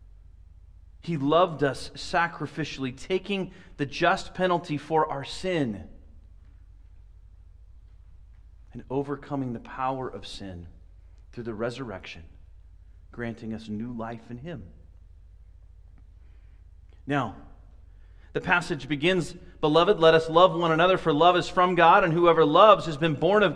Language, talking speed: English, 120 wpm